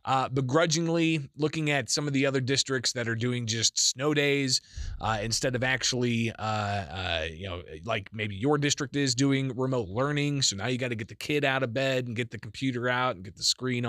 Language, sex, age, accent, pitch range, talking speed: English, male, 20-39, American, 115-150 Hz, 220 wpm